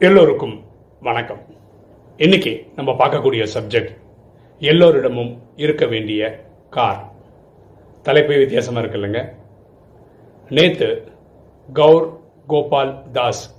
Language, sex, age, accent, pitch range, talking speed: Tamil, male, 40-59, native, 110-160 Hz, 75 wpm